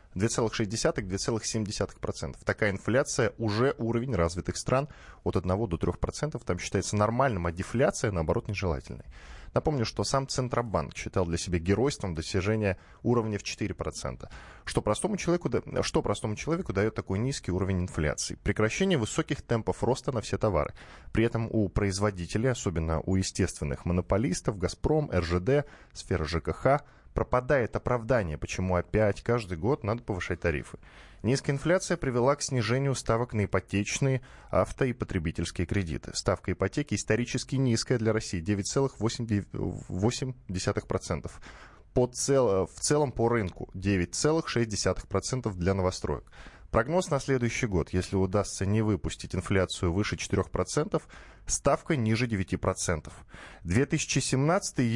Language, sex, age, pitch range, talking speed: Russian, male, 10-29, 95-125 Hz, 120 wpm